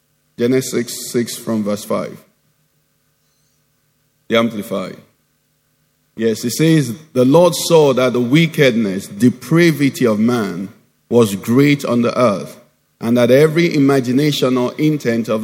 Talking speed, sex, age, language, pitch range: 125 wpm, male, 50-69, English, 115-140 Hz